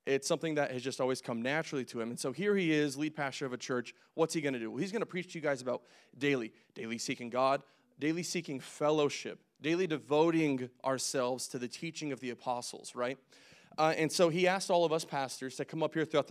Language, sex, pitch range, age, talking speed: English, male, 130-170 Hz, 20-39, 235 wpm